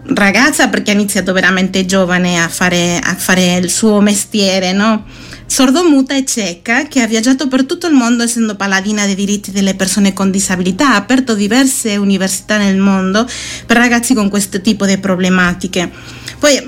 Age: 40-59